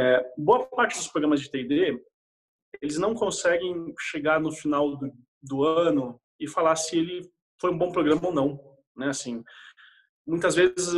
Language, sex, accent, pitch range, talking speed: Portuguese, male, Brazilian, 140-180 Hz, 165 wpm